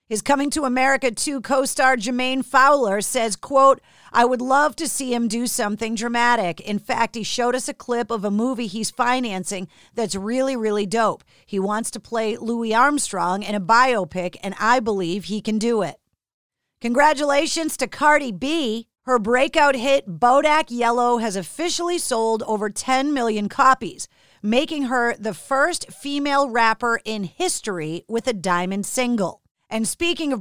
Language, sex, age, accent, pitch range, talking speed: English, female, 40-59, American, 220-280 Hz, 160 wpm